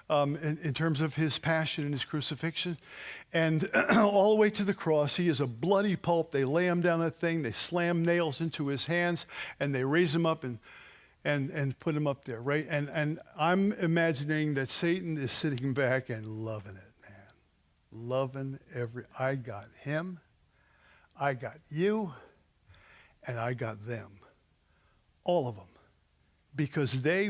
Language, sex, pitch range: English, male, 130-195 Hz